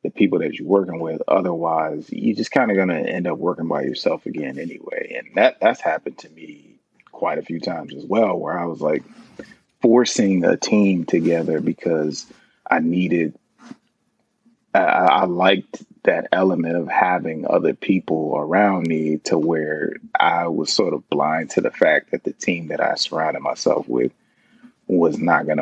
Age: 30-49